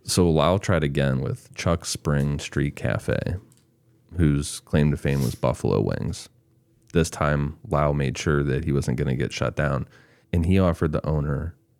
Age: 30-49